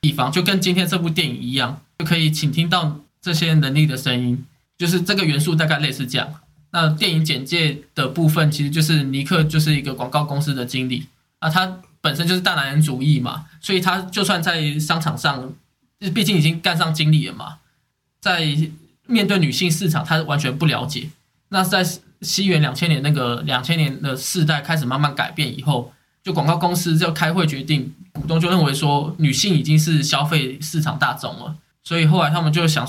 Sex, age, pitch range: male, 10-29, 145-170 Hz